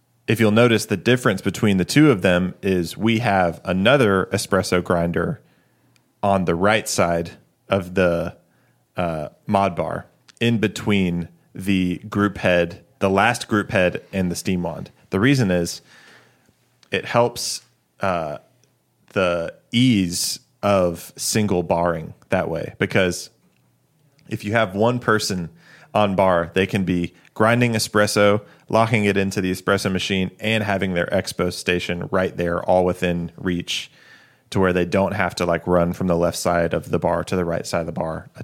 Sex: male